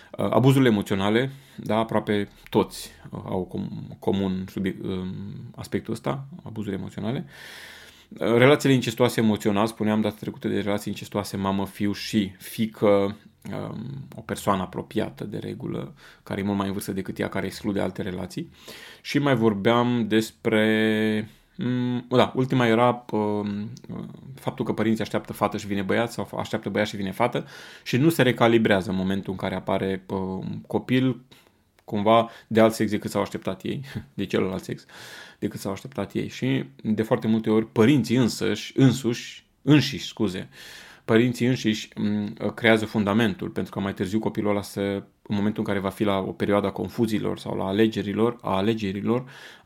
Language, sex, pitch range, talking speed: Romanian, male, 100-120 Hz, 150 wpm